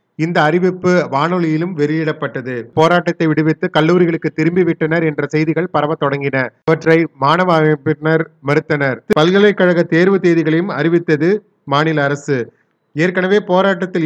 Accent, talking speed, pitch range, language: native, 100 wpm, 155-175 Hz, Tamil